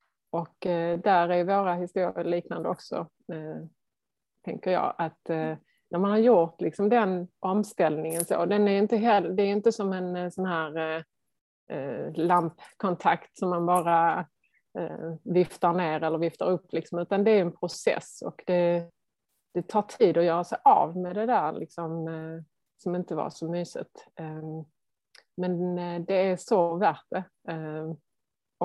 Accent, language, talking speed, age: native, Swedish, 160 wpm, 30-49